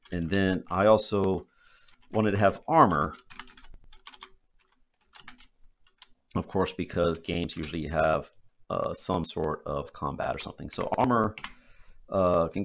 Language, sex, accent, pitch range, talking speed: English, male, American, 80-95 Hz, 120 wpm